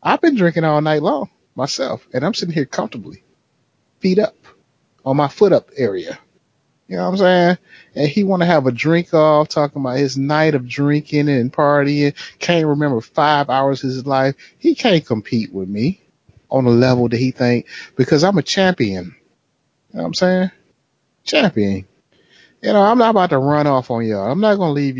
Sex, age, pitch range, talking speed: male, 30-49, 120-175 Hz, 200 wpm